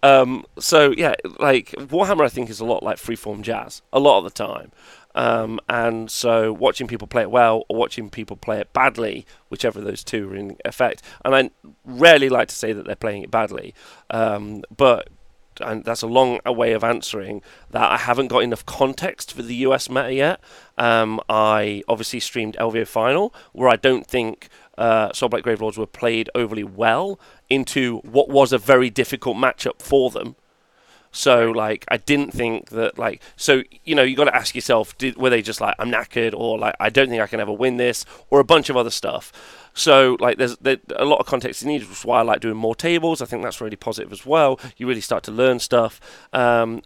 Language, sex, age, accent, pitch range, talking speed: English, male, 30-49, British, 110-130 Hz, 210 wpm